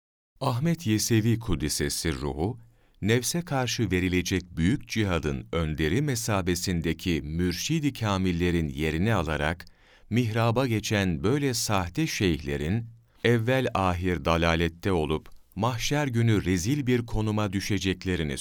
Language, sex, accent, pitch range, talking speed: Turkish, male, native, 85-120 Hz, 100 wpm